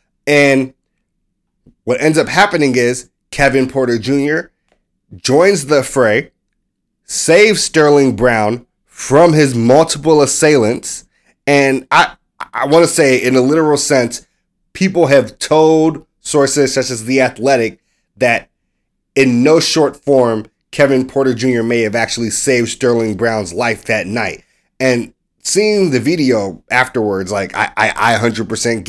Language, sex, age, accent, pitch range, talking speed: English, male, 30-49, American, 120-145 Hz, 135 wpm